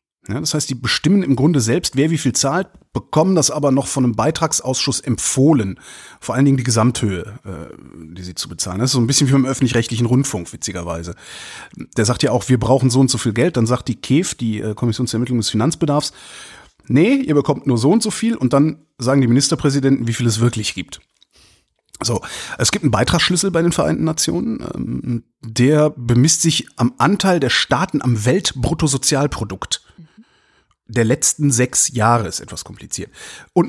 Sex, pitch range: male, 115-150 Hz